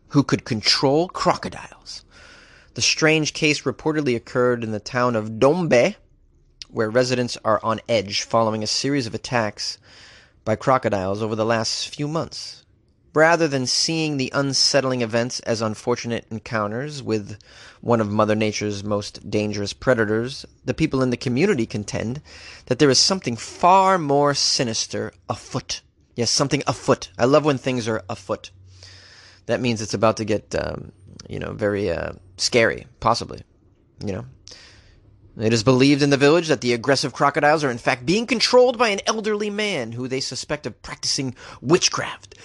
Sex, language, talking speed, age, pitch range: male, English, 155 wpm, 30-49, 110-140 Hz